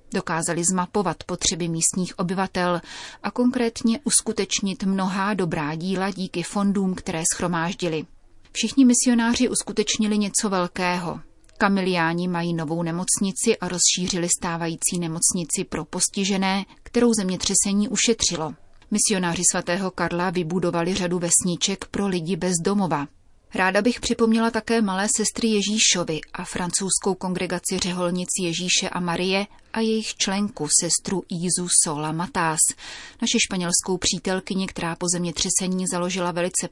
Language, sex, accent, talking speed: Czech, female, native, 120 wpm